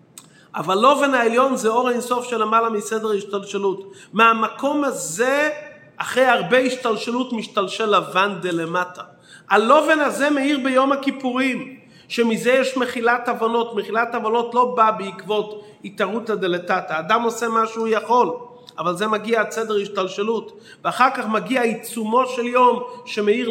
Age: 30-49